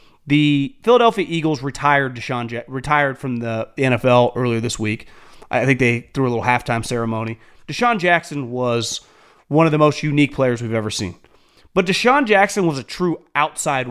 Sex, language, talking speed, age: male, English, 175 wpm, 30-49